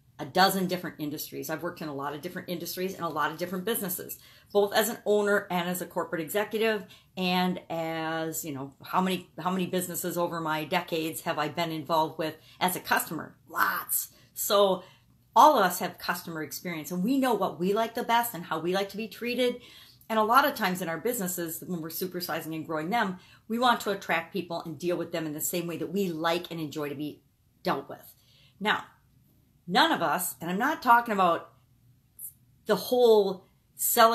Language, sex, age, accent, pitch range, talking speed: English, female, 50-69, American, 165-210 Hz, 205 wpm